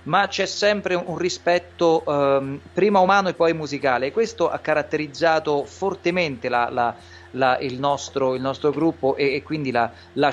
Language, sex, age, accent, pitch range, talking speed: Italian, male, 30-49, native, 130-165 Hz, 170 wpm